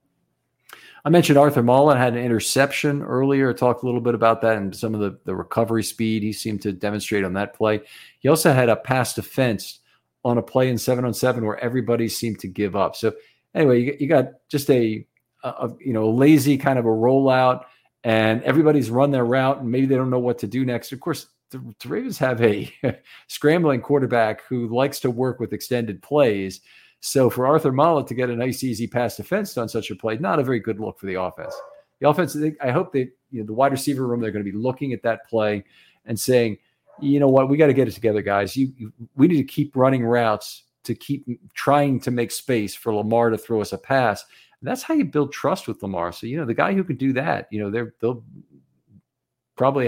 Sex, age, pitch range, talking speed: male, 50-69, 110-135 Hz, 230 wpm